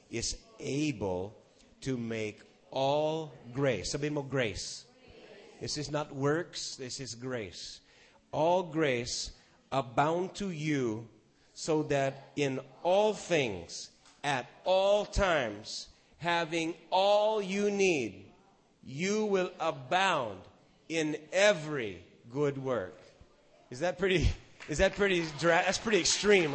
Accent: American